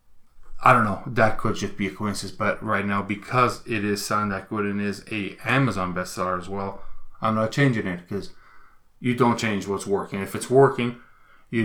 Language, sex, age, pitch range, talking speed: English, male, 20-39, 105-125 Hz, 200 wpm